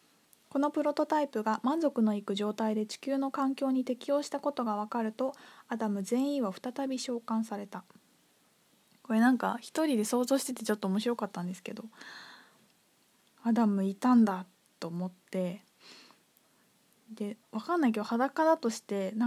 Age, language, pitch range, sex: 20-39, Japanese, 210-270 Hz, female